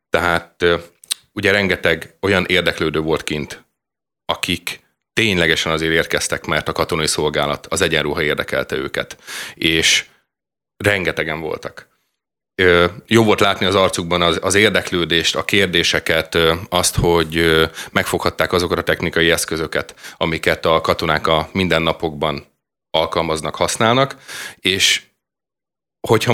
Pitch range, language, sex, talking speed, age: 80-100 Hz, Hungarian, male, 105 wpm, 30-49